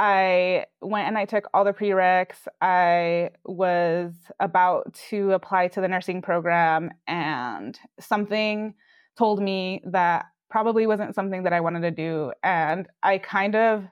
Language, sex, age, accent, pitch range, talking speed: English, female, 20-39, American, 180-205 Hz, 145 wpm